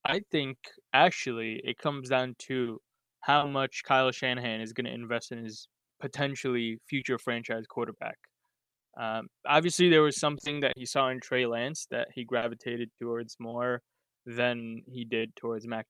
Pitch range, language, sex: 120-145 Hz, English, male